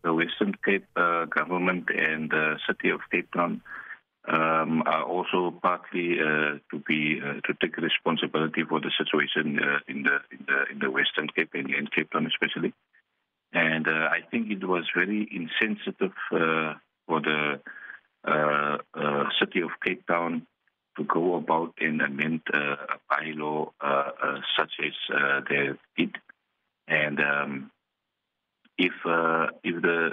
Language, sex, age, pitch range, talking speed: English, male, 50-69, 75-85 Hz, 155 wpm